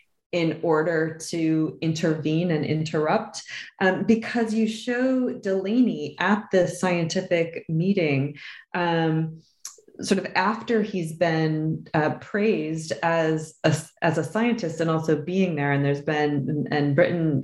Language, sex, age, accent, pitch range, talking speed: English, female, 20-39, American, 150-190 Hz, 125 wpm